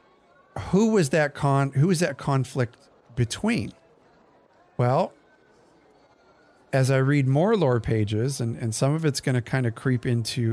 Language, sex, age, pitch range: English, male, 40-59, 110-135 Hz